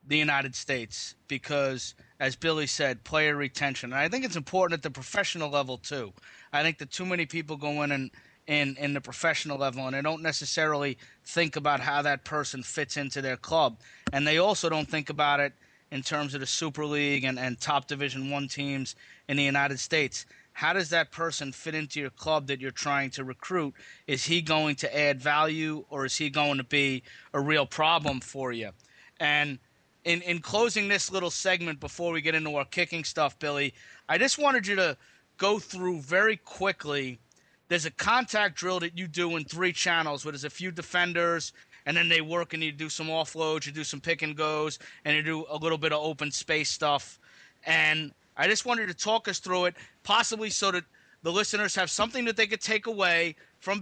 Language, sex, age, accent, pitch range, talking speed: English, male, 30-49, American, 145-175 Hz, 205 wpm